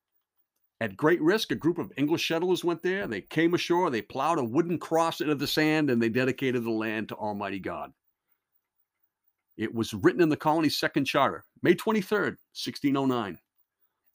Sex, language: male, English